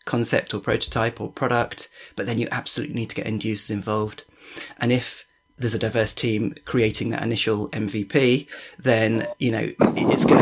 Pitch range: 110-130 Hz